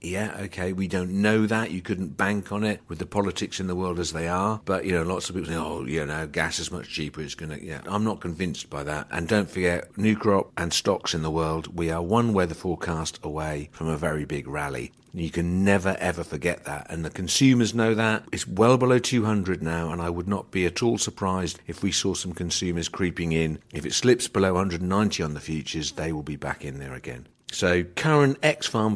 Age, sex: 50-69, male